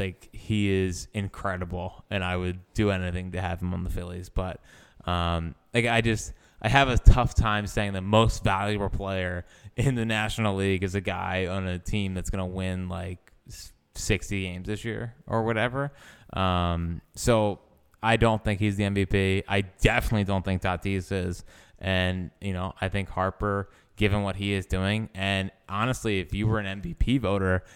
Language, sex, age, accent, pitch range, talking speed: English, male, 20-39, American, 95-115 Hz, 180 wpm